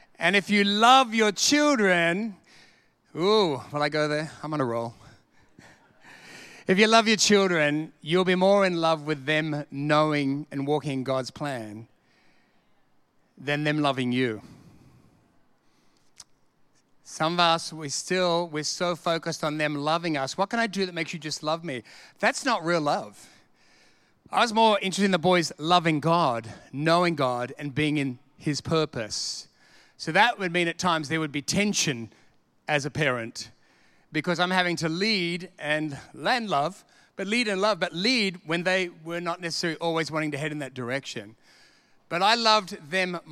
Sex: male